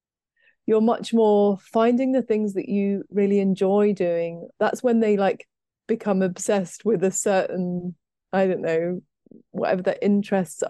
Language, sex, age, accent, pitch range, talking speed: English, female, 30-49, British, 180-210 Hz, 145 wpm